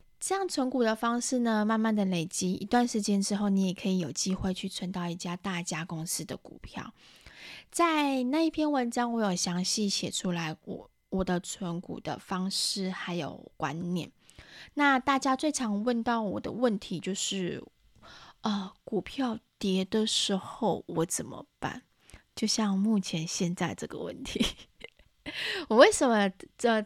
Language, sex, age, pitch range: Chinese, female, 20-39, 185-245 Hz